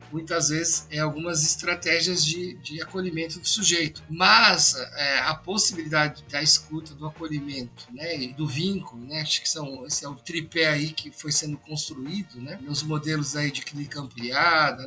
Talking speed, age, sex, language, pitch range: 165 wpm, 50-69, male, Portuguese, 150-185 Hz